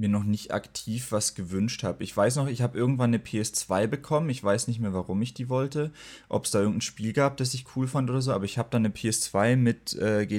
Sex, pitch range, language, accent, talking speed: male, 100-125 Hz, German, German, 255 wpm